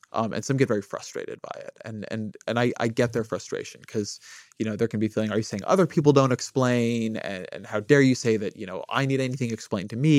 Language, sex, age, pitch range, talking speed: English, male, 30-49, 110-135 Hz, 265 wpm